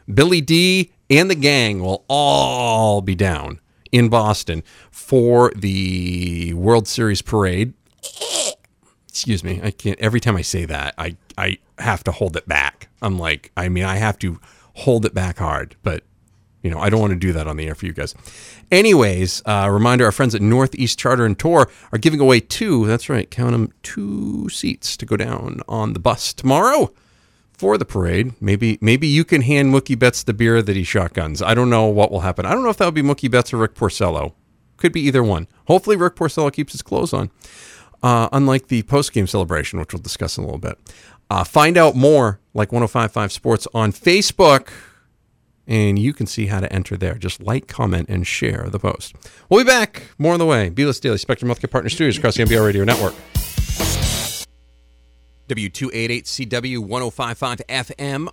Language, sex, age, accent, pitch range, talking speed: English, male, 40-59, American, 95-130 Hz, 190 wpm